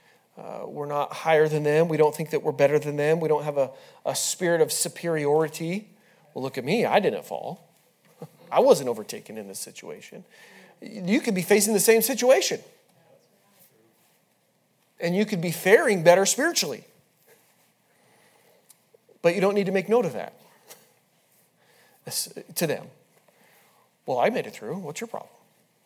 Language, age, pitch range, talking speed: English, 40-59, 150-210 Hz, 160 wpm